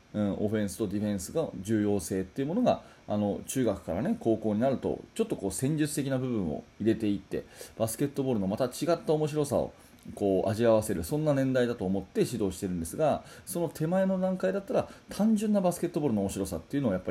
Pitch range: 105-160 Hz